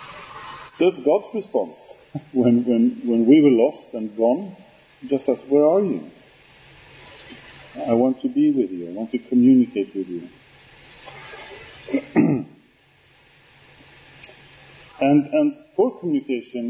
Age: 40-59